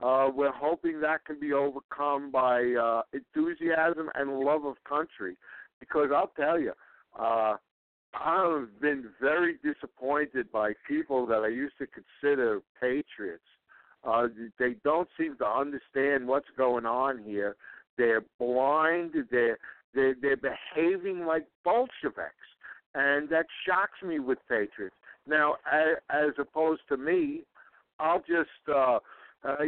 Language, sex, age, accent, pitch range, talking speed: English, male, 60-79, American, 135-160 Hz, 130 wpm